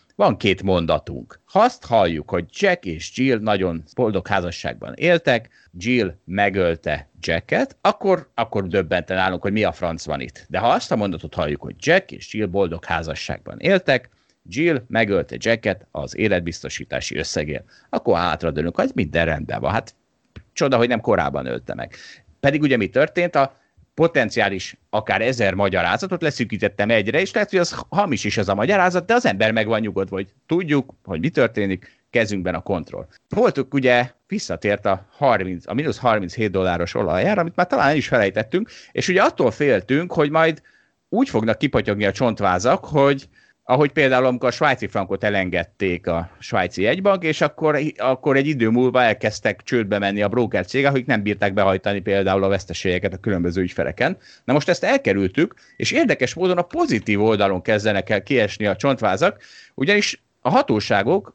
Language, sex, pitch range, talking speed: Hungarian, male, 95-135 Hz, 165 wpm